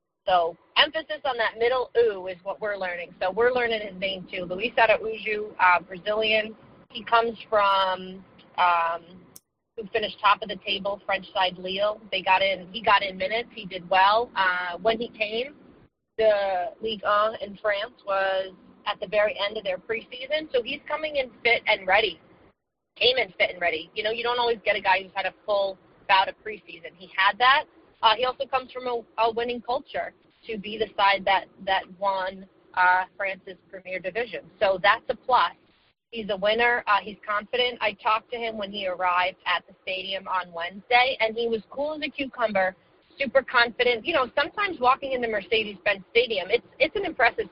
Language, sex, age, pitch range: English, female, 30-49, 190-245 Hz